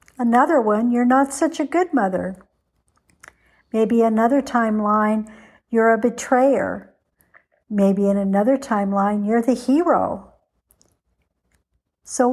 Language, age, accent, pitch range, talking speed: English, 60-79, American, 205-245 Hz, 105 wpm